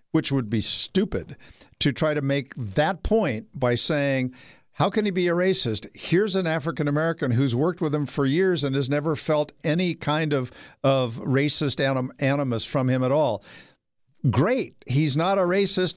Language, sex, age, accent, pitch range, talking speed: English, male, 50-69, American, 130-160 Hz, 175 wpm